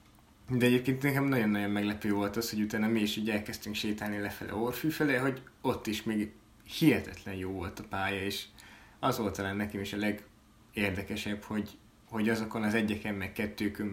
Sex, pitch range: male, 105-115 Hz